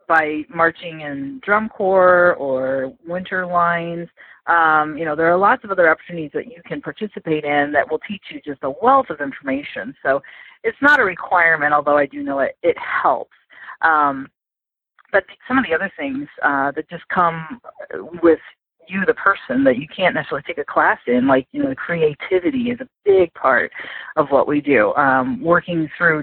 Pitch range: 145-190 Hz